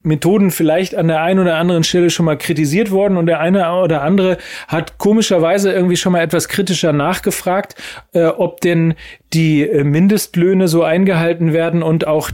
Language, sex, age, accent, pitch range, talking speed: German, male, 40-59, German, 150-190 Hz, 170 wpm